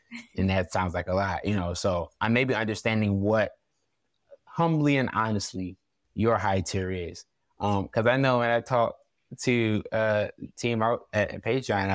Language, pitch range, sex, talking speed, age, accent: English, 100-125 Hz, male, 170 wpm, 20-39, American